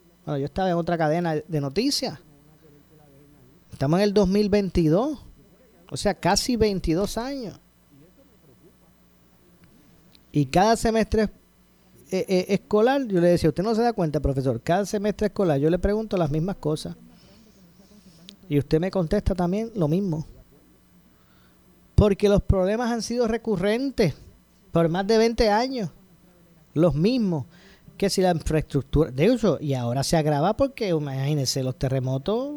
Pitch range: 145-200 Hz